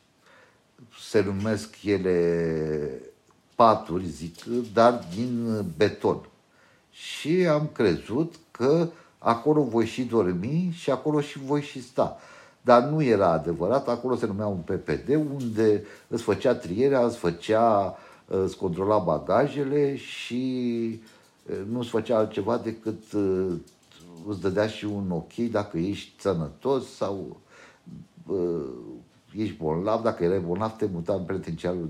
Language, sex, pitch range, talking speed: Romanian, male, 90-120 Hz, 120 wpm